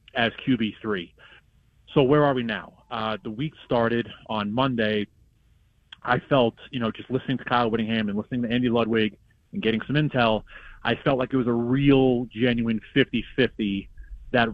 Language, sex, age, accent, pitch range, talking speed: English, male, 30-49, American, 110-130 Hz, 180 wpm